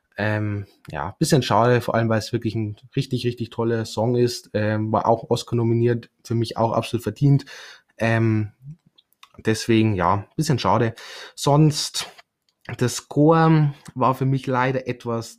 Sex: male